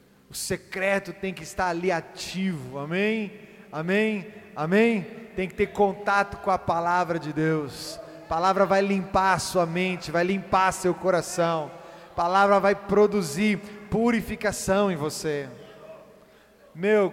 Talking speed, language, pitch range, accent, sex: 130 wpm, Portuguese, 180-210 Hz, Brazilian, male